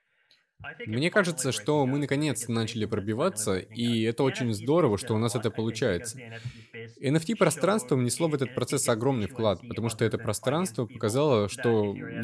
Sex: male